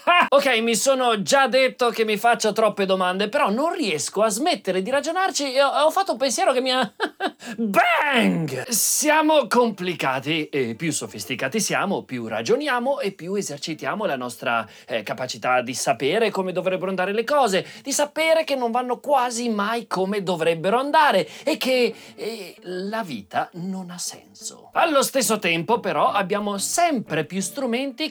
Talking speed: 160 wpm